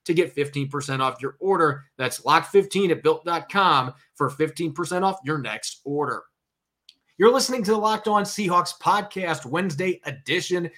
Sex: male